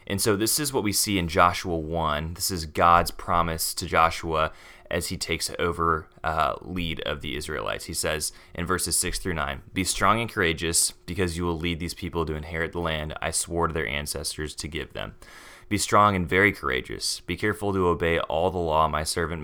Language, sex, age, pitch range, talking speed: English, male, 20-39, 80-95 Hz, 210 wpm